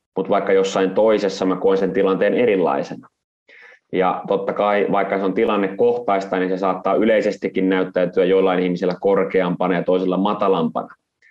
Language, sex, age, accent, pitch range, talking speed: Finnish, male, 30-49, native, 95-115 Hz, 140 wpm